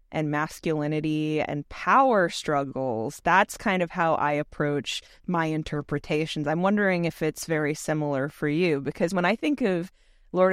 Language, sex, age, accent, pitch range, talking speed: English, female, 20-39, American, 150-175 Hz, 155 wpm